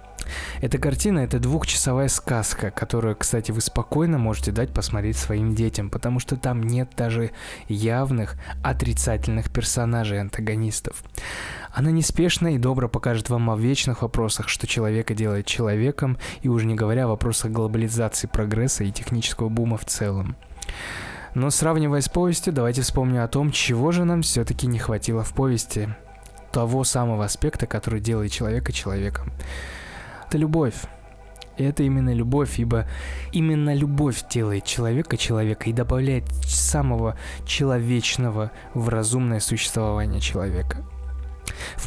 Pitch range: 105-130 Hz